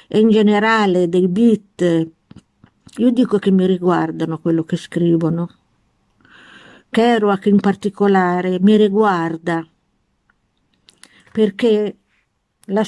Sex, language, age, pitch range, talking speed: female, Italian, 50-69, 165-210 Hz, 95 wpm